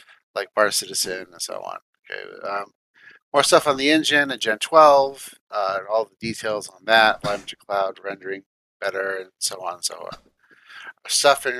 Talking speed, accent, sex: 180 wpm, American, male